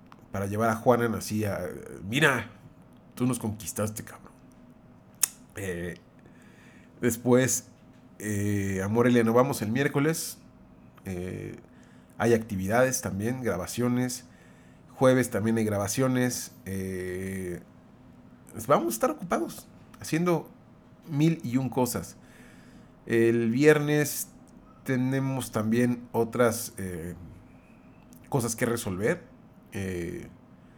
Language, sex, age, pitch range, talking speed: Spanish, male, 40-59, 105-130 Hz, 95 wpm